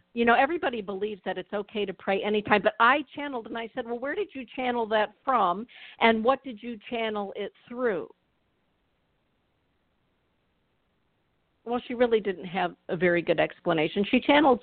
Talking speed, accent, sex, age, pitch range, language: 170 wpm, American, female, 50-69, 185-235 Hz, English